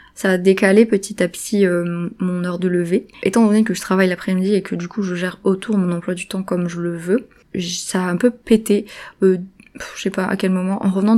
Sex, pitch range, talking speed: female, 180-210 Hz, 250 wpm